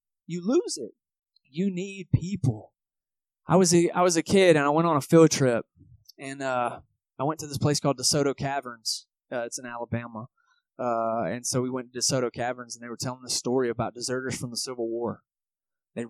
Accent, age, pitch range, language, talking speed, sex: American, 20-39, 125-170 Hz, English, 205 wpm, male